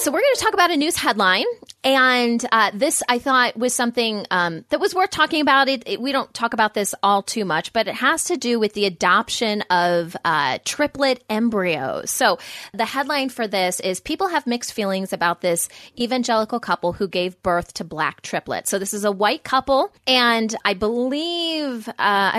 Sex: female